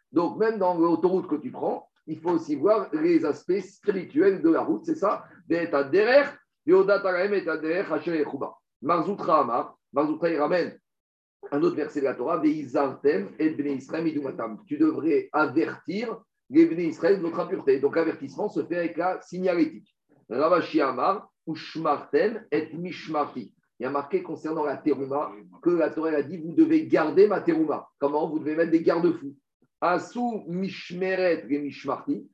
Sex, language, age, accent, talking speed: male, French, 50-69, French, 120 wpm